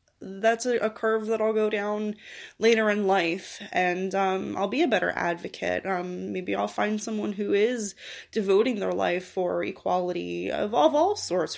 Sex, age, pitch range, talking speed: female, 20-39, 185-225 Hz, 170 wpm